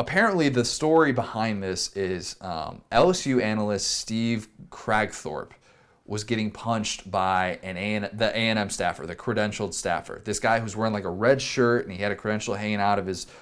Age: 20-39